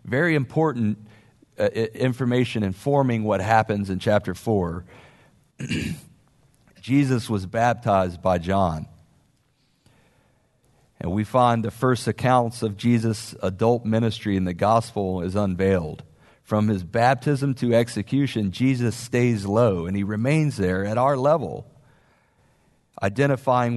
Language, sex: English, male